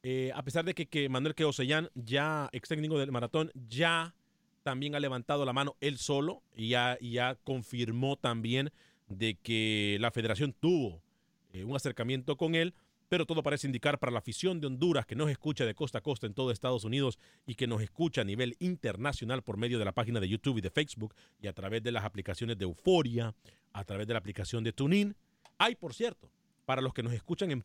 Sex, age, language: male, 40-59, Spanish